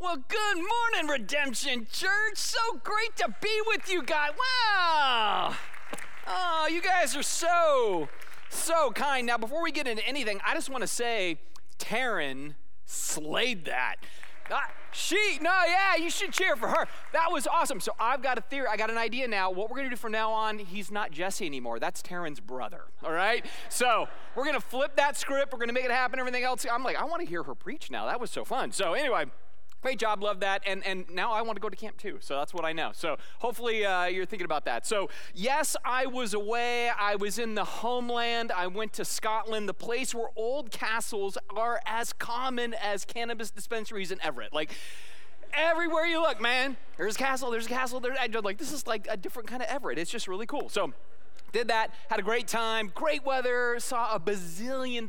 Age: 30-49